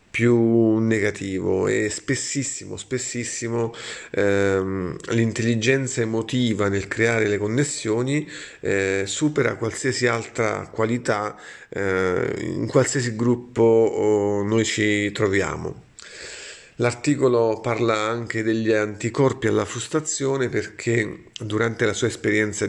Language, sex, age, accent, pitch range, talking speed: Italian, male, 40-59, native, 110-130 Hz, 100 wpm